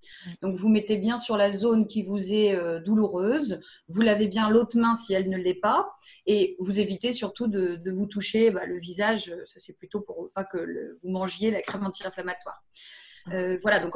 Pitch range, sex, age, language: 195-235 Hz, female, 30-49, French